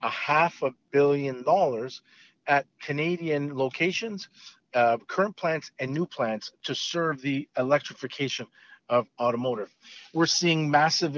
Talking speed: 125 wpm